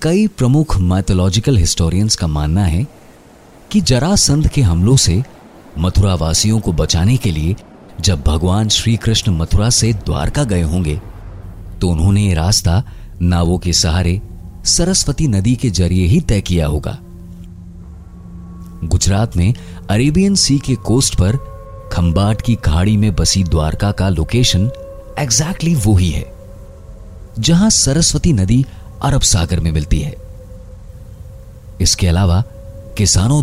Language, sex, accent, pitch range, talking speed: Hindi, male, native, 85-115 Hz, 125 wpm